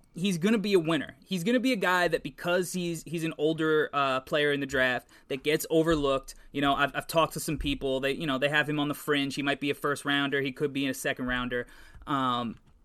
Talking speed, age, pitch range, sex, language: 255 wpm, 20-39, 140-170 Hz, male, English